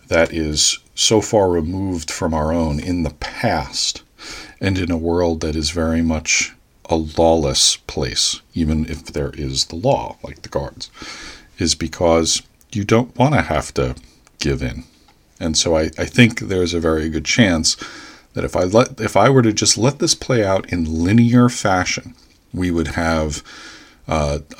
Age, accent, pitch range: 40-59, American, 75-90 Hz